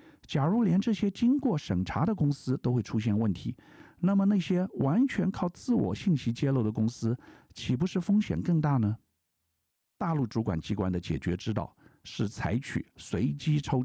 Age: 50-69